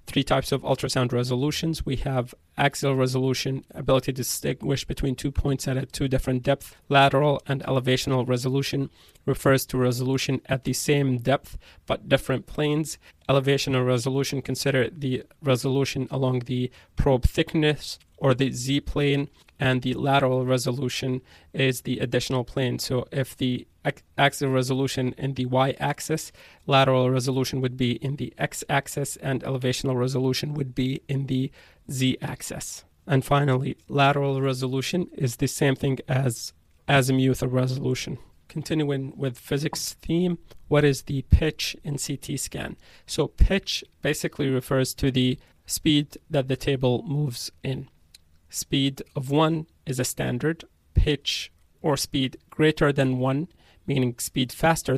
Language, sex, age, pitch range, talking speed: English, male, 20-39, 130-140 Hz, 140 wpm